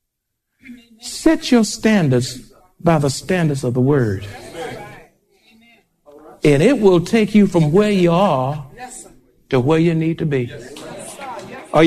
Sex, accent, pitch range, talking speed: male, American, 135-195 Hz, 125 wpm